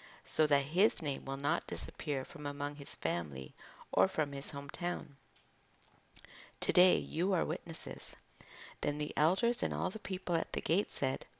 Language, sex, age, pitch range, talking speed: English, female, 50-69, 135-175 Hz, 160 wpm